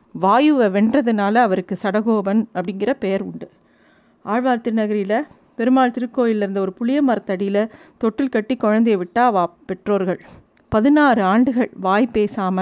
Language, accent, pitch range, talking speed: Tamil, native, 200-260 Hz, 105 wpm